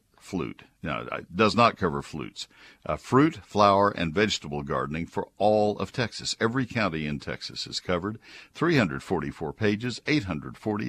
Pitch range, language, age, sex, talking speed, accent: 85-110 Hz, English, 60-79, male, 140 wpm, American